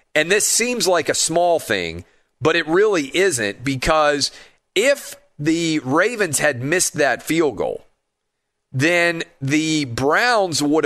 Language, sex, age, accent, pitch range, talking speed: English, male, 40-59, American, 125-170 Hz, 135 wpm